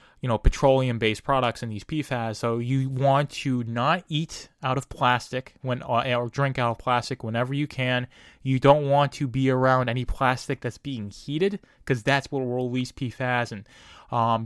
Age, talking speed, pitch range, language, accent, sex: 20-39, 185 wpm, 115-130 Hz, English, American, male